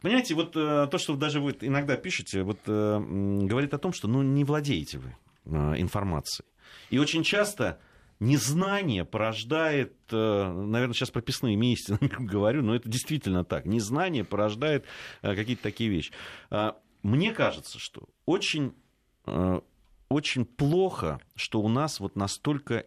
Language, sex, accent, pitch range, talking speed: Russian, male, native, 95-130 Hz, 145 wpm